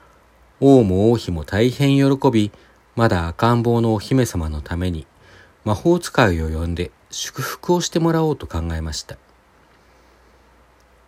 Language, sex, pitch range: Japanese, male, 80-125 Hz